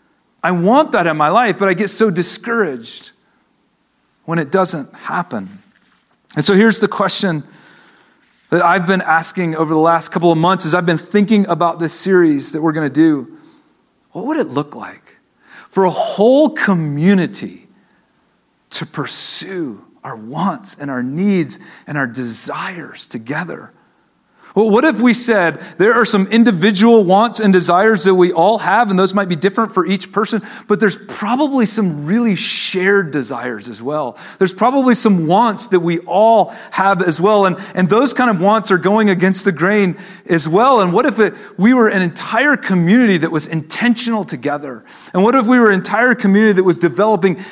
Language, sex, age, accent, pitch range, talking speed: English, male, 40-59, American, 170-215 Hz, 180 wpm